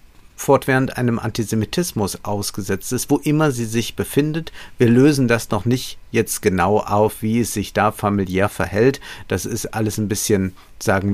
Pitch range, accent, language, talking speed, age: 110-140 Hz, German, German, 160 wpm, 50-69